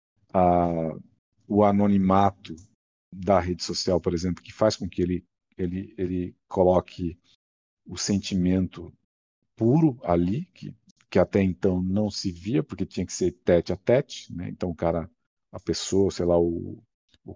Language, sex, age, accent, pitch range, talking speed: Portuguese, male, 50-69, Brazilian, 90-100 Hz, 150 wpm